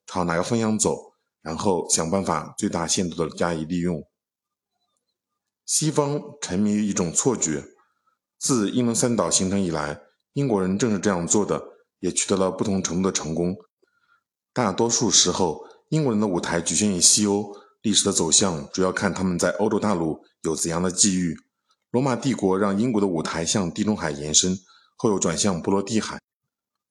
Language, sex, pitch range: Chinese, male, 90-115 Hz